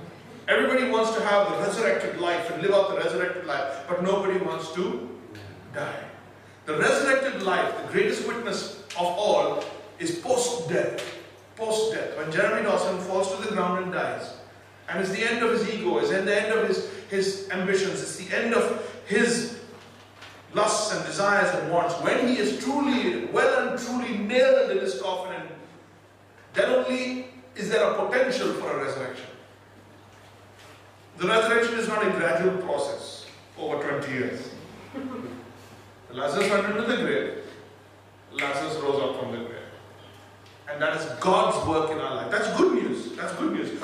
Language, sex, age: English, male, 50-69